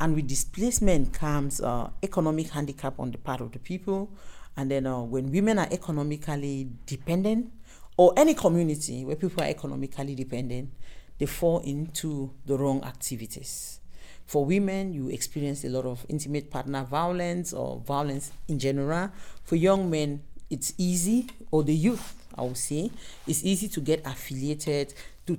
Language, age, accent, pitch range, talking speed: German, 50-69, Nigerian, 135-180 Hz, 155 wpm